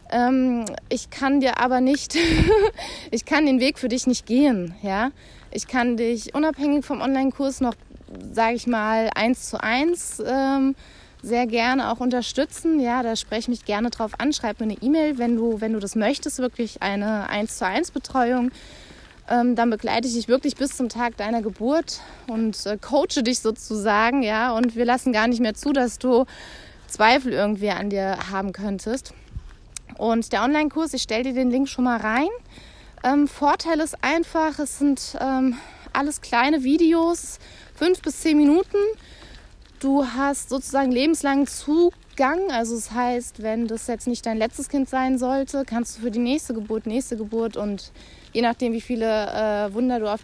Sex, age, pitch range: female, 20-39, 225-275 Hz